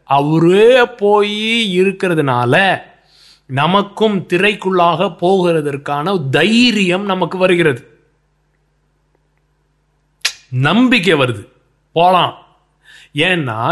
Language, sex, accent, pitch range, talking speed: English, male, Indian, 145-190 Hz, 55 wpm